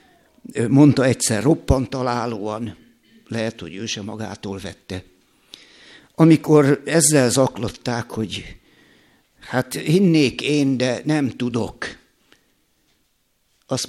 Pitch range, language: 125-170 Hz, Hungarian